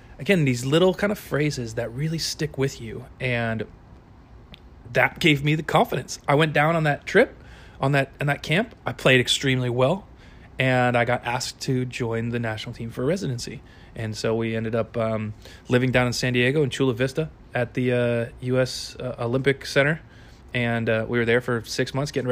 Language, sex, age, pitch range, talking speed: English, male, 30-49, 115-135 Hz, 195 wpm